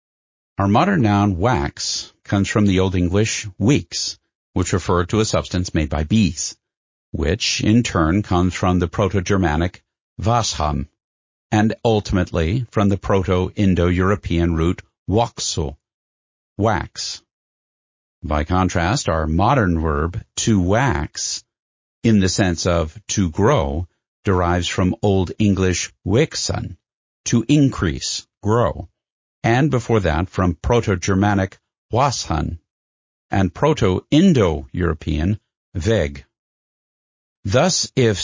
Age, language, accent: 50-69, English, American